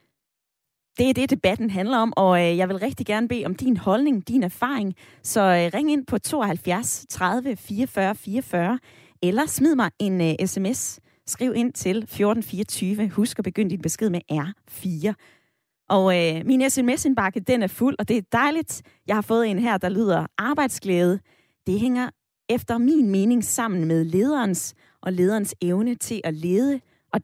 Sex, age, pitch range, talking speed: female, 20-39, 180-240 Hz, 170 wpm